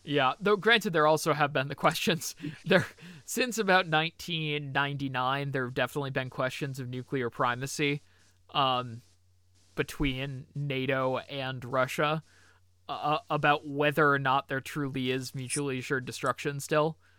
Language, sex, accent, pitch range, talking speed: English, male, American, 125-150 Hz, 135 wpm